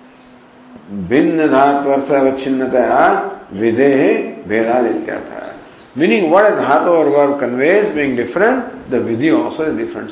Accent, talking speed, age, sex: Indian, 100 wpm, 50-69, male